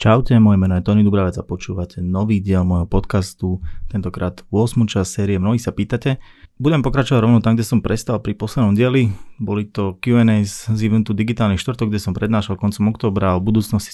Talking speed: 185 wpm